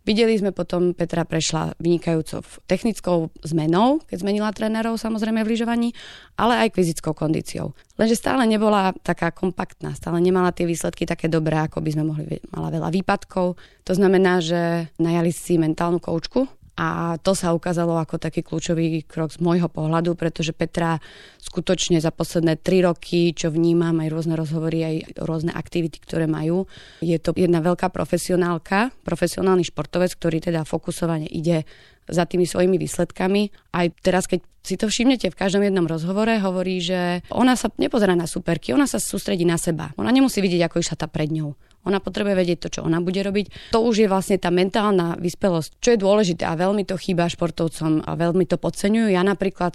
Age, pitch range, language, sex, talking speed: 30-49, 165-185 Hz, Slovak, female, 175 wpm